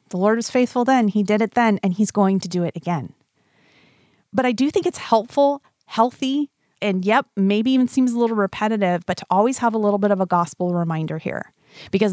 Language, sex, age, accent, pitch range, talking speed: English, female, 30-49, American, 180-230 Hz, 220 wpm